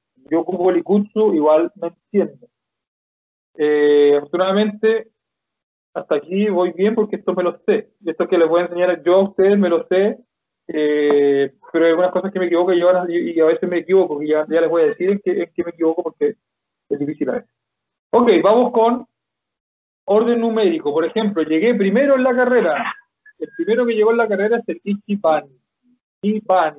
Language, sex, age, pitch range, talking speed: Spanish, male, 40-59, 170-215 Hz, 180 wpm